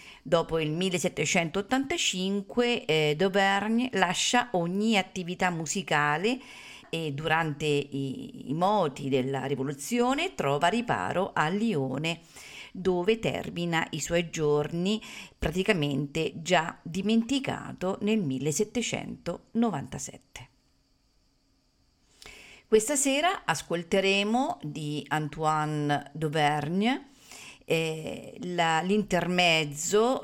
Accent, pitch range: native, 155-215 Hz